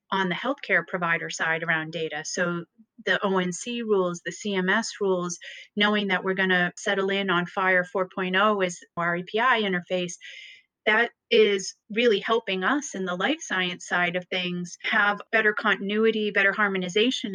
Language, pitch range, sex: English, 180-215 Hz, female